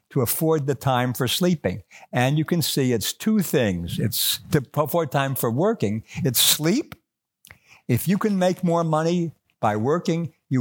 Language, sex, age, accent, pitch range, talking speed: English, male, 60-79, American, 110-160 Hz, 170 wpm